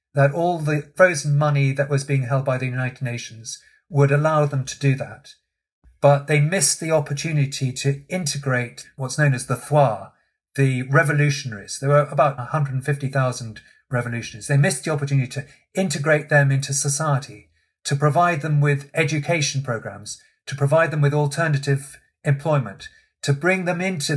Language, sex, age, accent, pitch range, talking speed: English, male, 40-59, British, 135-150 Hz, 155 wpm